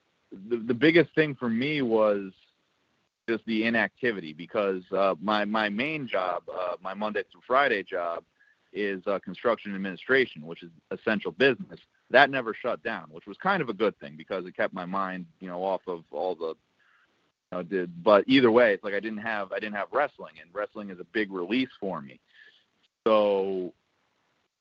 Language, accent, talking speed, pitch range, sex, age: English, American, 185 wpm, 100-125 Hz, male, 30-49